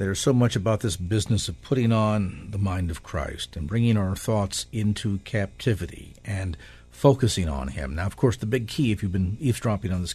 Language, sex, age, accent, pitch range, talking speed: English, male, 50-69, American, 95-120 Hz, 205 wpm